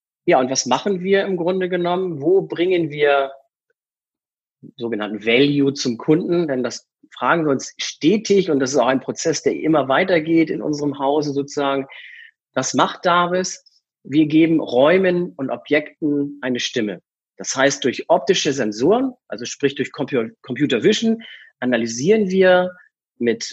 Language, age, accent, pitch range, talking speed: German, 40-59, German, 130-180 Hz, 145 wpm